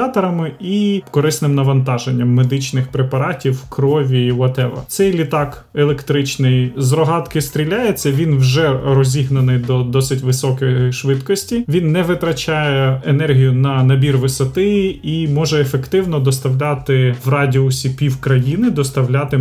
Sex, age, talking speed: male, 30-49, 115 wpm